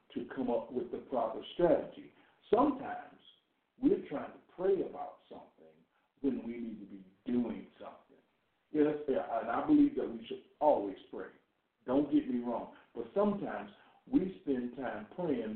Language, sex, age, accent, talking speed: English, male, 60-79, American, 150 wpm